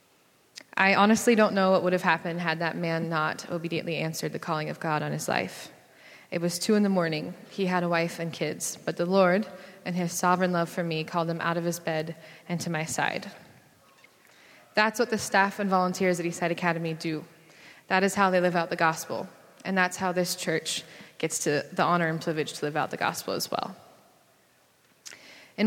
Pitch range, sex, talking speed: 165-190 Hz, female, 210 wpm